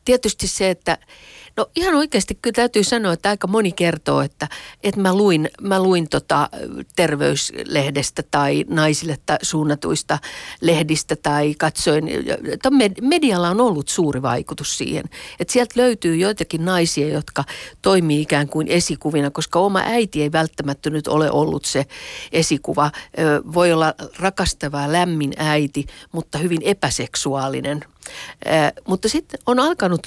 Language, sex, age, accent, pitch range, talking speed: Finnish, female, 50-69, native, 150-190 Hz, 130 wpm